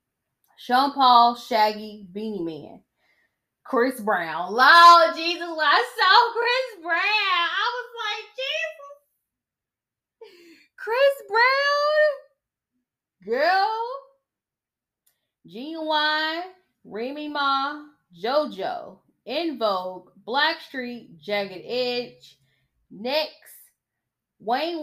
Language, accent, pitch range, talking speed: English, American, 200-300 Hz, 80 wpm